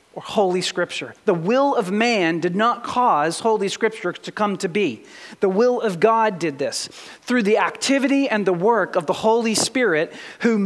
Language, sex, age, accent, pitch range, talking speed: English, male, 40-59, American, 205-285 Hz, 185 wpm